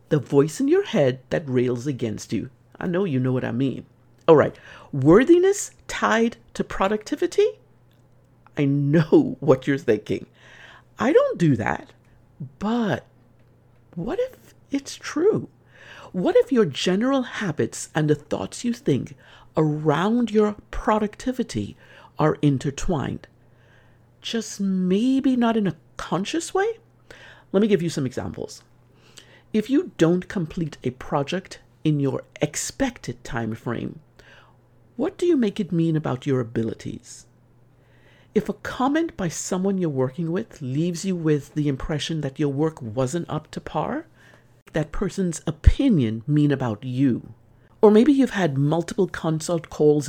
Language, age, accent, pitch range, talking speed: English, 50-69, American, 125-200 Hz, 140 wpm